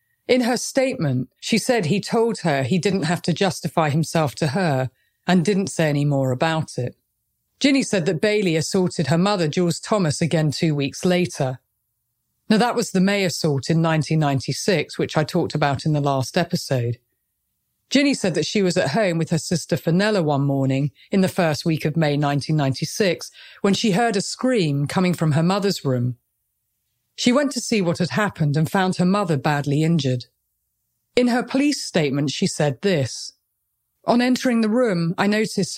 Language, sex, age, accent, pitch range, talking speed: English, female, 40-59, British, 145-200 Hz, 180 wpm